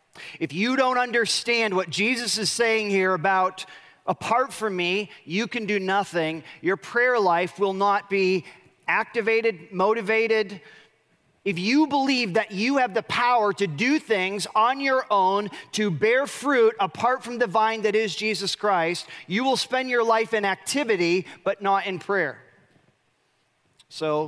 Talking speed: 155 wpm